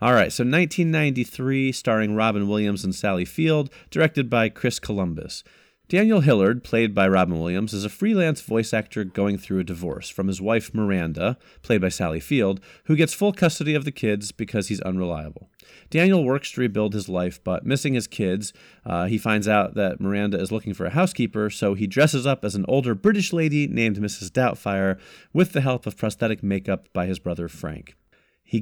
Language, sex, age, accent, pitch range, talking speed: English, male, 40-59, American, 100-140 Hz, 190 wpm